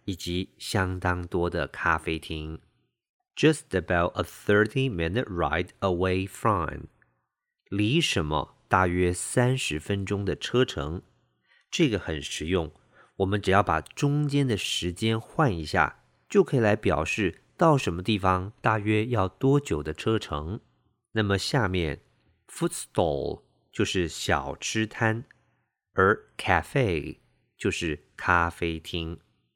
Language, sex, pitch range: English, male, 85-115 Hz